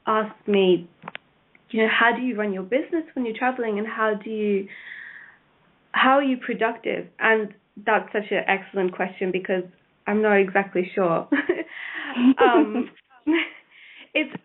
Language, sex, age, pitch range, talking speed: English, female, 20-39, 190-245 Hz, 140 wpm